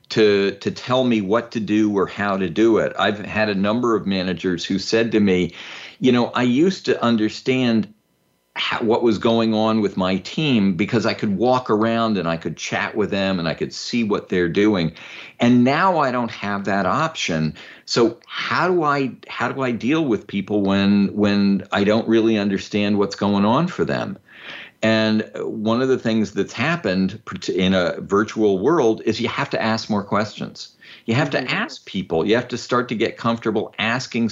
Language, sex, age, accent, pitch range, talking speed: English, male, 50-69, American, 95-115 Hz, 200 wpm